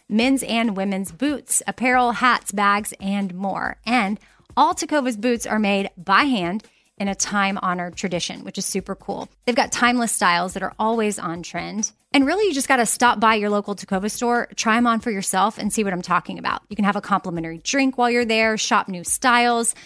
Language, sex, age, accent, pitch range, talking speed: English, female, 30-49, American, 185-235 Hz, 210 wpm